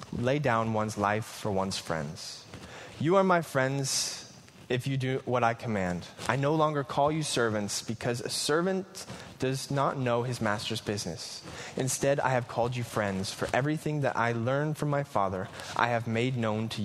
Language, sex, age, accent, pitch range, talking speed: Danish, male, 20-39, American, 110-145 Hz, 180 wpm